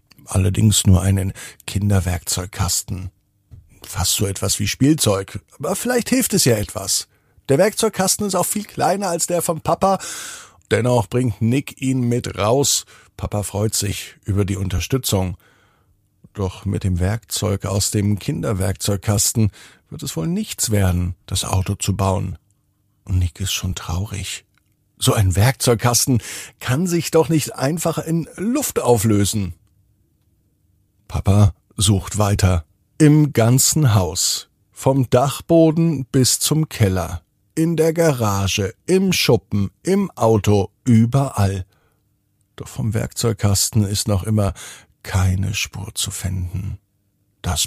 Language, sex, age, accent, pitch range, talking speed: German, male, 50-69, German, 95-130 Hz, 125 wpm